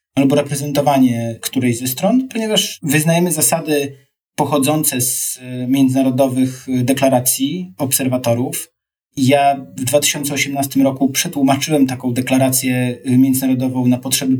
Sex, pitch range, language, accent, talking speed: male, 125-150 Hz, Polish, native, 95 wpm